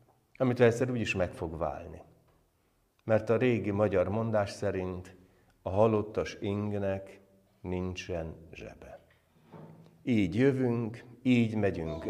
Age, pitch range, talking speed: 60-79, 95-125 Hz, 110 wpm